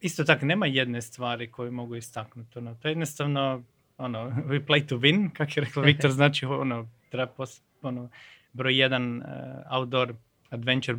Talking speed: 170 wpm